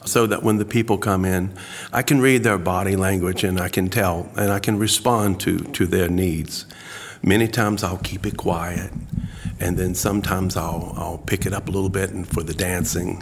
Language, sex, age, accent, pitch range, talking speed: English, male, 50-69, American, 85-100 Hz, 210 wpm